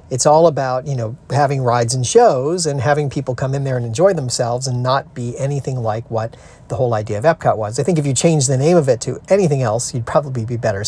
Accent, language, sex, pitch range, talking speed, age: American, English, male, 120-160 Hz, 255 wpm, 40-59